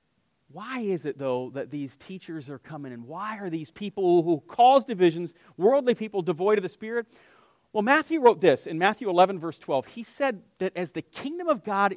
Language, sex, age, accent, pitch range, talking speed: English, male, 40-59, American, 165-225 Hz, 200 wpm